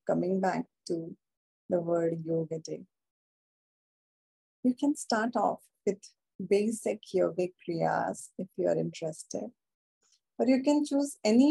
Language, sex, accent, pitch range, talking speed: English, female, Indian, 190-245 Hz, 125 wpm